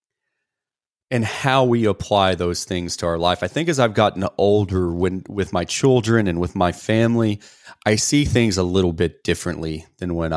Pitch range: 80-100 Hz